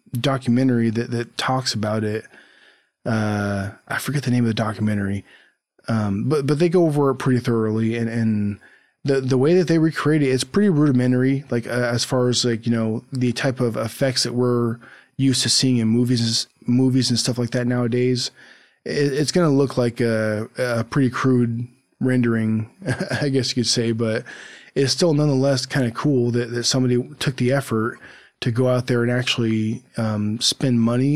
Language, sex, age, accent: English, male, 20-39, American